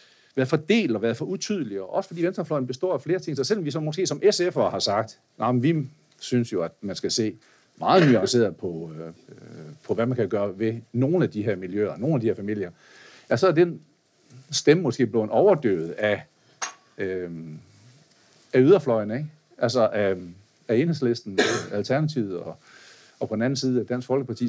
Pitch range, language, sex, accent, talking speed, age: 120-170 Hz, Danish, male, native, 190 wpm, 60-79